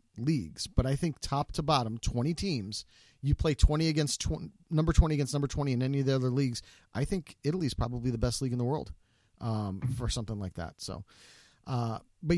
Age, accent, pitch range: 40-59, American, 125-165 Hz